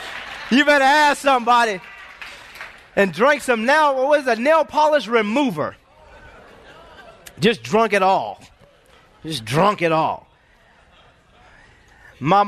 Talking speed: 95 wpm